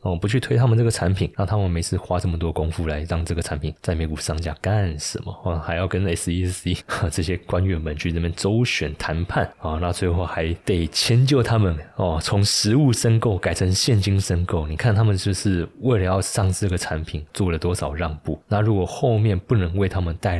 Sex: male